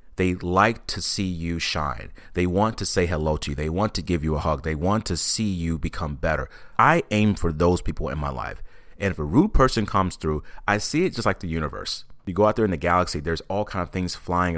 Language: English